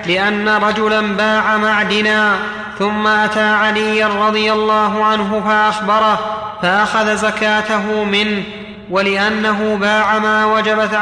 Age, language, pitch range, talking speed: 30-49, Arabic, 210-215 Hz, 100 wpm